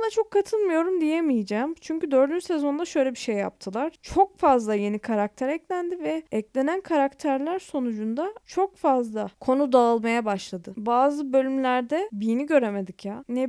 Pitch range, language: 220-290 Hz, Turkish